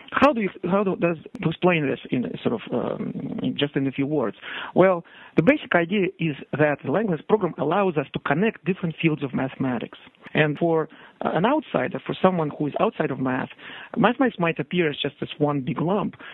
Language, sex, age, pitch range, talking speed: English, male, 50-69, 145-185 Hz, 200 wpm